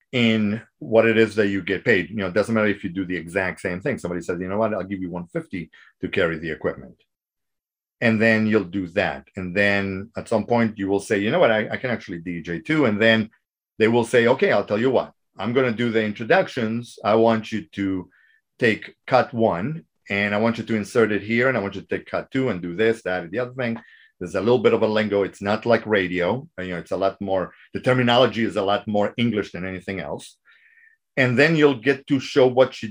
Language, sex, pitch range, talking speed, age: English, male, 95-115 Hz, 250 wpm, 40-59